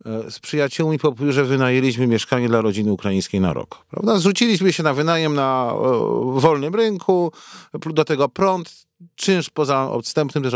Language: Polish